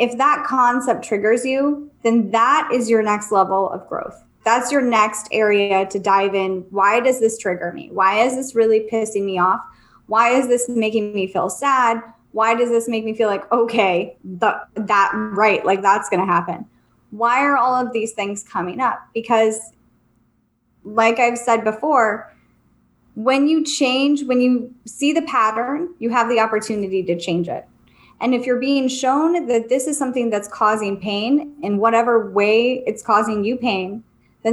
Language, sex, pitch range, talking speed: English, female, 210-250 Hz, 175 wpm